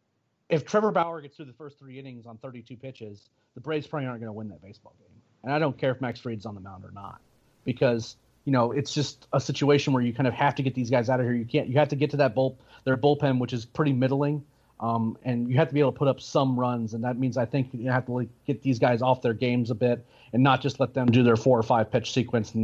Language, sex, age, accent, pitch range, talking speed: English, male, 30-49, American, 120-145 Hz, 290 wpm